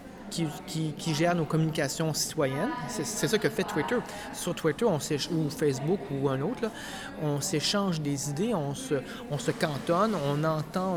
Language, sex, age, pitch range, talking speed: French, male, 30-49, 145-180 Hz, 175 wpm